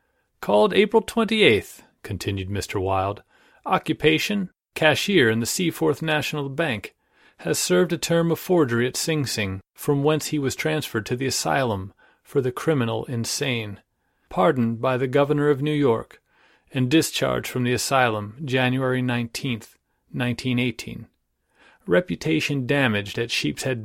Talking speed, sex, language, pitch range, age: 135 wpm, male, English, 105-145 Hz, 40-59